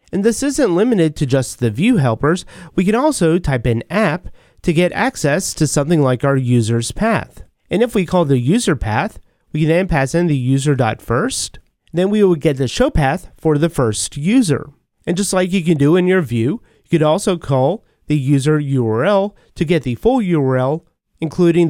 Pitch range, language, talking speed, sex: 130-190 Hz, English, 195 wpm, male